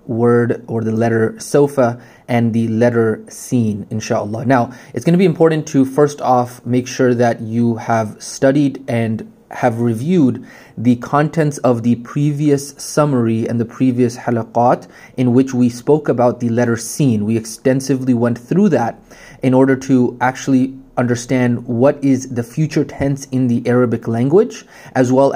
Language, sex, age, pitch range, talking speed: English, male, 20-39, 115-135 Hz, 160 wpm